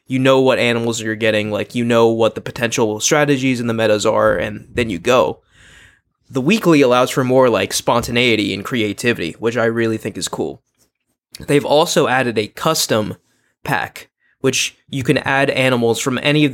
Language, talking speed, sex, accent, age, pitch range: English, 180 wpm, male, American, 20-39, 115-135 Hz